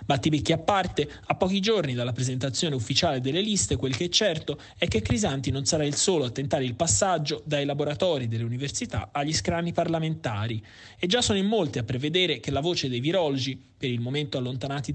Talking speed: 200 wpm